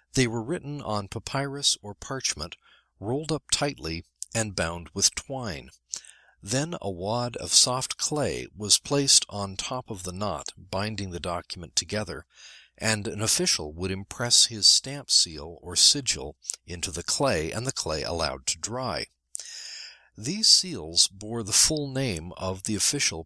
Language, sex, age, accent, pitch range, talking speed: English, male, 60-79, American, 85-120 Hz, 150 wpm